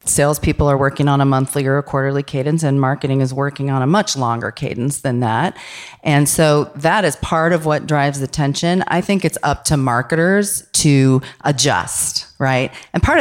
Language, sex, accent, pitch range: English, female, American, 130-155 Hz